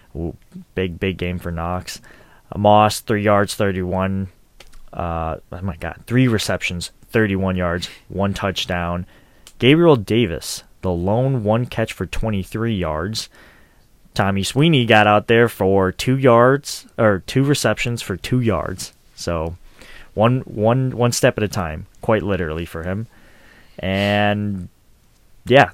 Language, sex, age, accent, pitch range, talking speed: English, male, 20-39, American, 90-115 Hz, 140 wpm